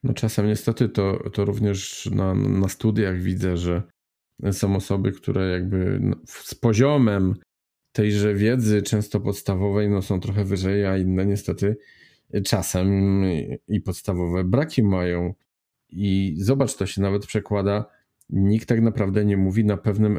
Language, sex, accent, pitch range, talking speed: Polish, male, native, 95-115 Hz, 135 wpm